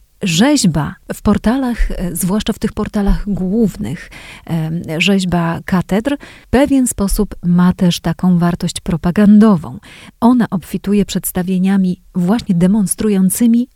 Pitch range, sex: 175-215 Hz, female